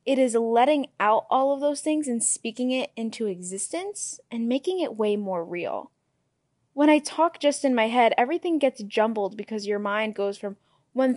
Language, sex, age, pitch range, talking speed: English, female, 10-29, 215-290 Hz, 190 wpm